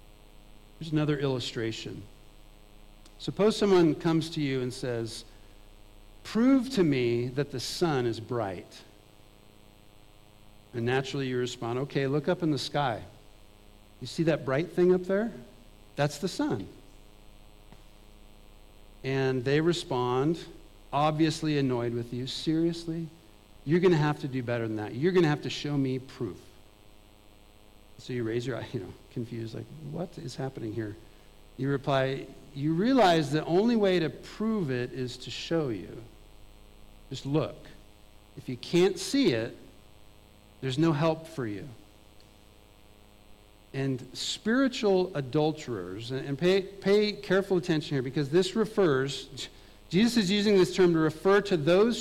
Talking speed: 140 wpm